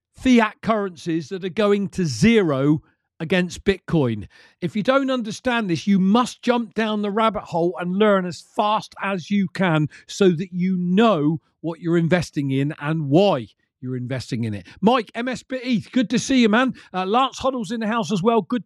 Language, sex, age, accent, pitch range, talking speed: English, male, 40-59, British, 180-240 Hz, 185 wpm